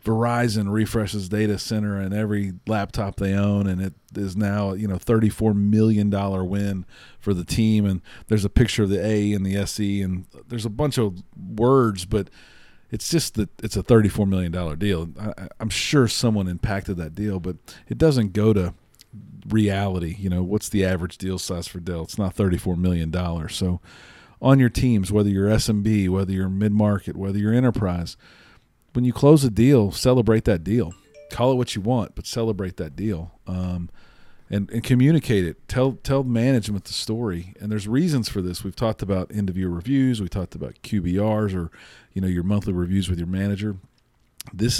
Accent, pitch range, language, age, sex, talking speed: American, 95-110 Hz, English, 40-59, male, 180 wpm